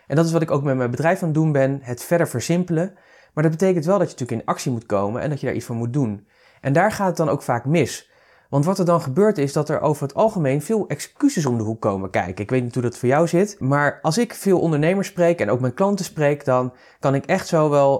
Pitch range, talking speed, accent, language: 125-175 Hz, 285 wpm, Dutch, Dutch